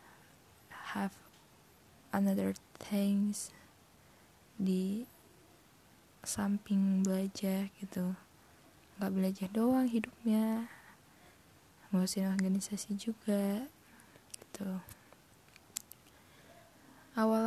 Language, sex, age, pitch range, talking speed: Hungarian, female, 20-39, 190-225 Hz, 55 wpm